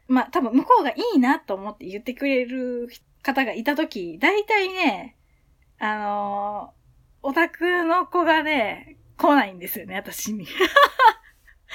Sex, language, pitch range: female, Japanese, 200-310 Hz